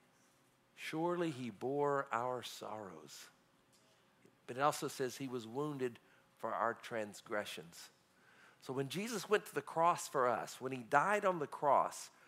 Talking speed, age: 145 wpm, 50-69